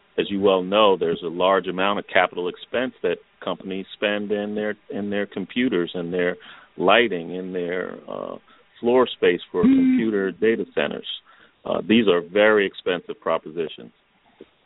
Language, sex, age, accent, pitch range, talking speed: English, male, 40-59, American, 85-105 Hz, 155 wpm